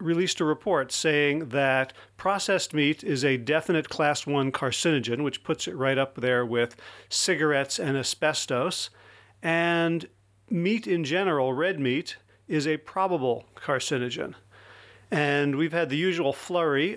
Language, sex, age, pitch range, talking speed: English, male, 40-59, 130-160 Hz, 140 wpm